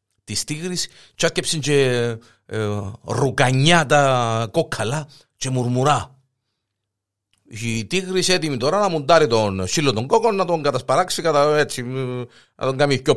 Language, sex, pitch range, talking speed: Greek, male, 100-150 Hz, 80 wpm